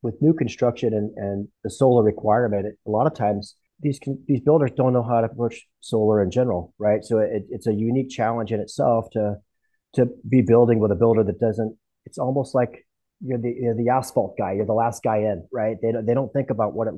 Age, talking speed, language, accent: 30-49, 230 wpm, English, American